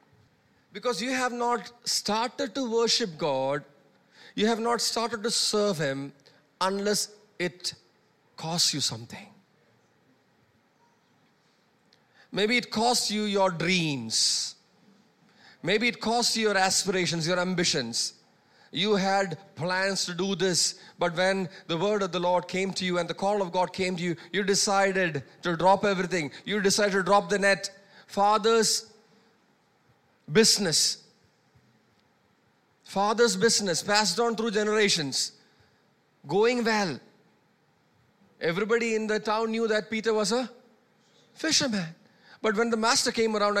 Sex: male